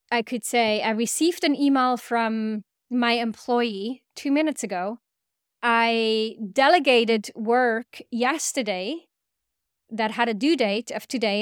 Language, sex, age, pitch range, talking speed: English, female, 20-39, 220-275 Hz, 125 wpm